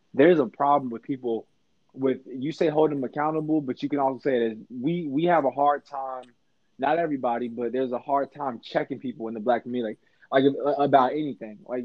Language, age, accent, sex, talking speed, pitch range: English, 20-39, American, male, 210 wpm, 125-145 Hz